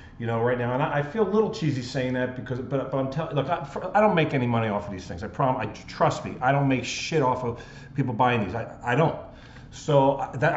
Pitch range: 120-150 Hz